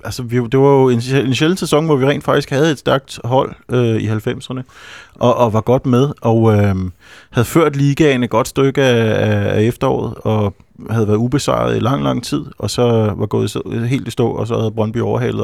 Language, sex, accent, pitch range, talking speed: Danish, male, native, 105-125 Hz, 210 wpm